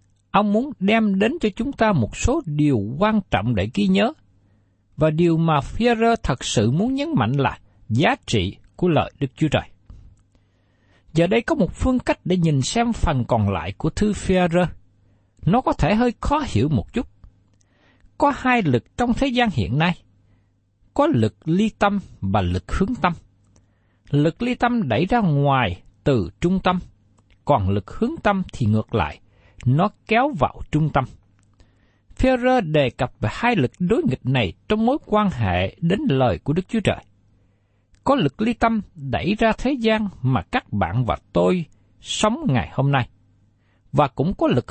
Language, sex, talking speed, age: Vietnamese, male, 175 wpm, 60-79